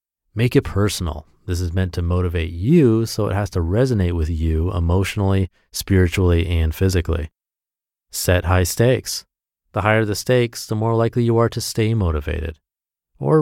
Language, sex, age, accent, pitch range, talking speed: English, male, 30-49, American, 90-120 Hz, 160 wpm